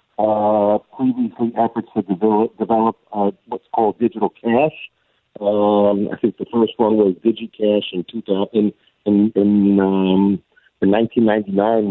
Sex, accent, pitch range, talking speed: male, American, 100-115 Hz, 135 wpm